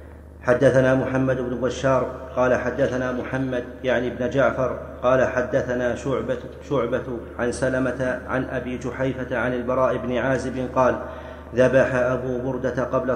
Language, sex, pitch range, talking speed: Arabic, male, 125-130 Hz, 130 wpm